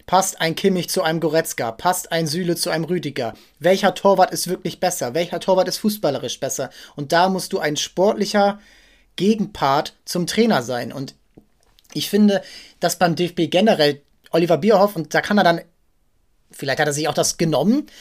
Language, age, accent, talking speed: German, 30-49, German, 175 wpm